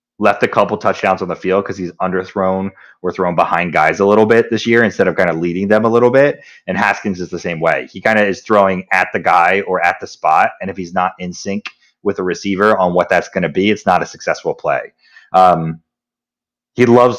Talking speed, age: 240 wpm, 30-49